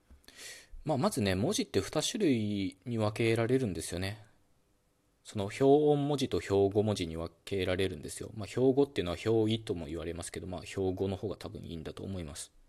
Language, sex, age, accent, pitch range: Japanese, male, 20-39, native, 90-130 Hz